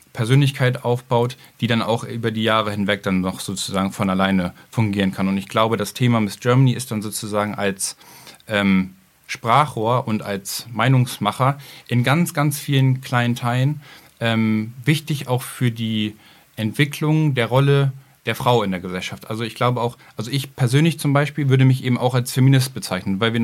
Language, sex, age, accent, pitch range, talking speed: German, male, 10-29, German, 110-135 Hz, 175 wpm